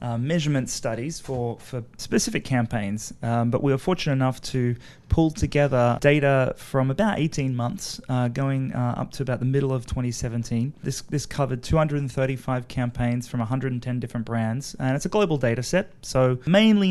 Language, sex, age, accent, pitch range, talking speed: English, male, 30-49, Australian, 115-140 Hz, 170 wpm